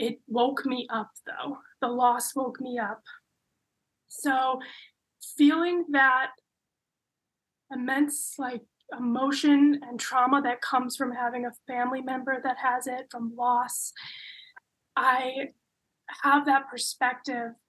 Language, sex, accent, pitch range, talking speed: English, female, American, 235-270 Hz, 115 wpm